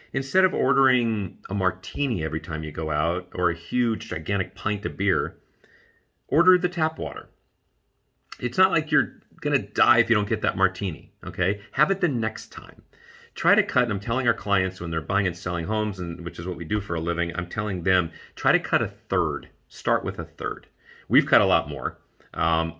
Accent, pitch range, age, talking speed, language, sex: American, 85-115 Hz, 40-59, 215 wpm, English, male